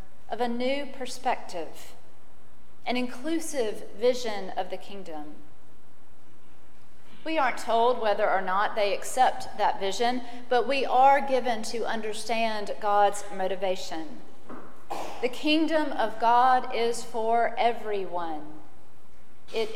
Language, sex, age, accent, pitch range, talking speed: English, female, 40-59, American, 205-245 Hz, 110 wpm